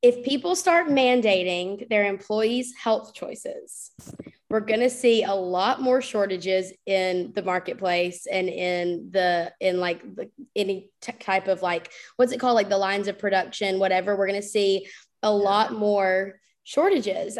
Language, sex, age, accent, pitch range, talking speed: English, female, 20-39, American, 200-245 Hz, 160 wpm